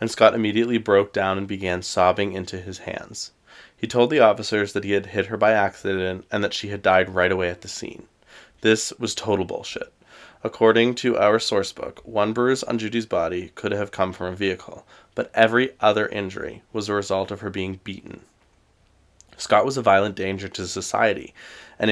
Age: 20-39